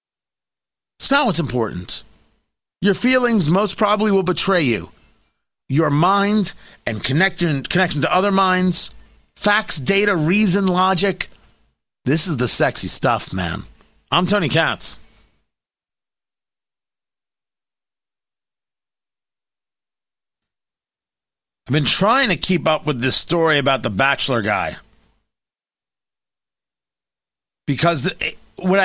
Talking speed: 95 wpm